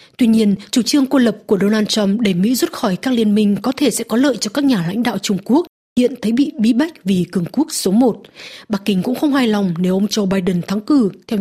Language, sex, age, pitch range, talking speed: Vietnamese, female, 20-39, 195-250 Hz, 270 wpm